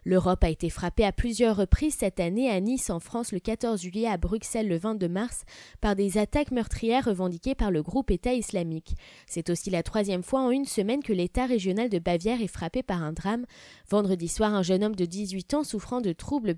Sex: female